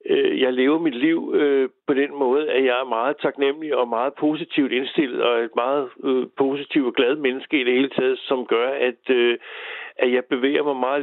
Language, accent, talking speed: Danish, native, 205 wpm